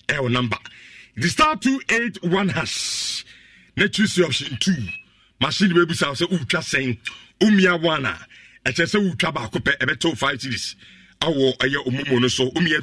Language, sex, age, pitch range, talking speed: English, male, 50-69, 130-180 Hz, 70 wpm